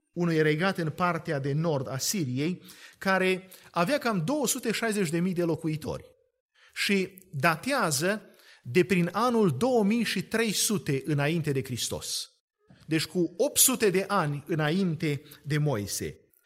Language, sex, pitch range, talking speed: Romanian, male, 150-205 Hz, 115 wpm